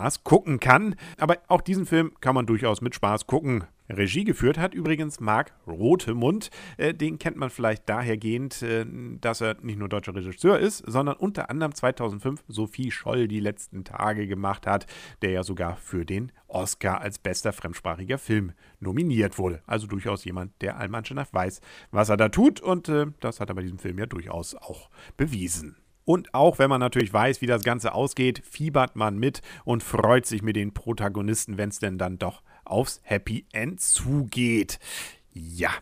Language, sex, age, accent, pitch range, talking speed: German, male, 50-69, German, 100-130 Hz, 175 wpm